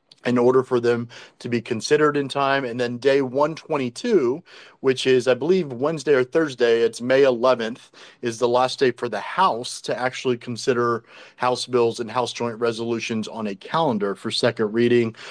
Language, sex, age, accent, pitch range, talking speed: English, male, 40-59, American, 120-145 Hz, 185 wpm